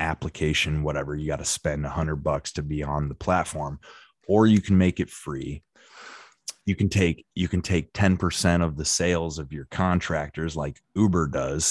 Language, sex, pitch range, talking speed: English, male, 75-95 Hz, 190 wpm